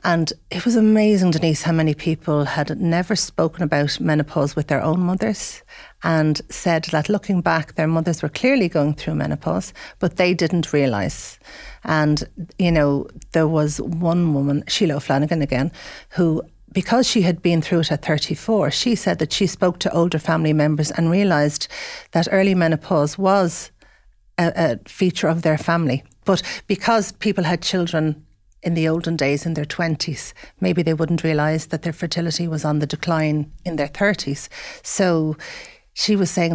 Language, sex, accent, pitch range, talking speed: English, female, Irish, 150-180 Hz, 170 wpm